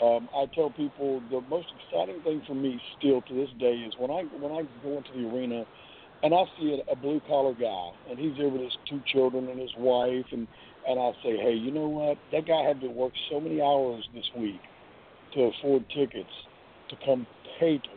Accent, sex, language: American, male, English